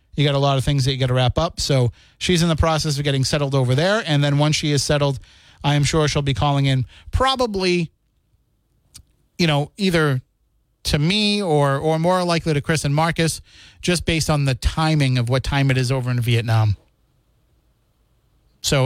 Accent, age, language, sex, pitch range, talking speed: American, 30-49, English, male, 125-160 Hz, 200 wpm